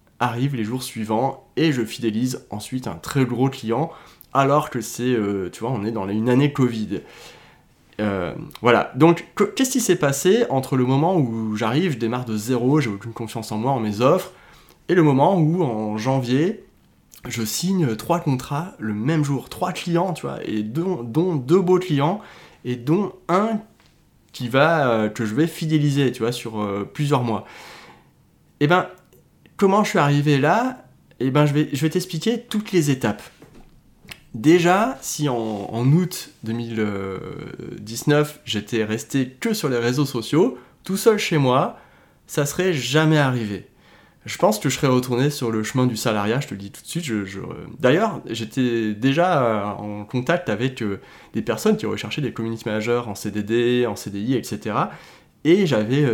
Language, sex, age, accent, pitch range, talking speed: French, male, 20-39, French, 115-160 Hz, 175 wpm